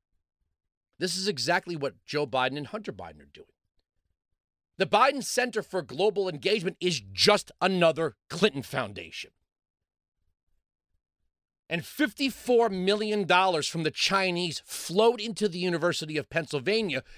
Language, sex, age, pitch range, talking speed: English, male, 40-59, 135-200 Hz, 120 wpm